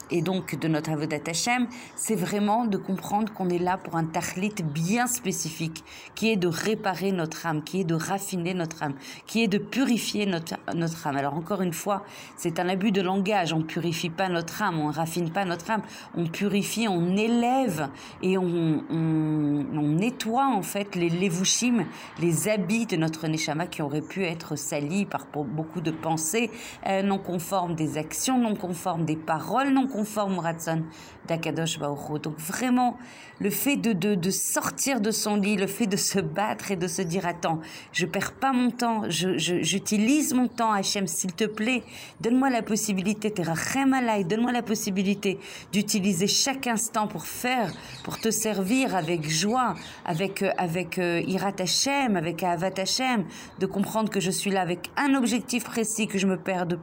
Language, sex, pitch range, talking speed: French, female, 170-215 Hz, 185 wpm